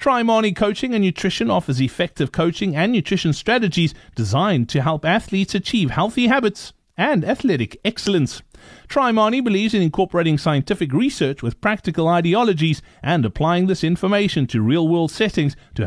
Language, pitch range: English, 150-205 Hz